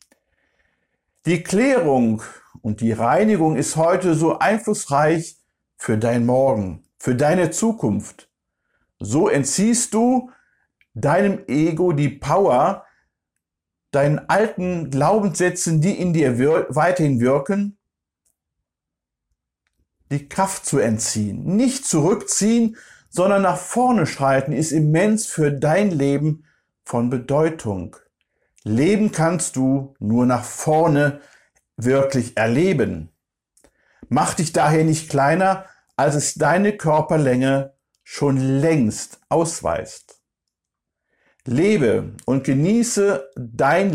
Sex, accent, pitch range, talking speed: male, German, 115-175 Hz, 95 wpm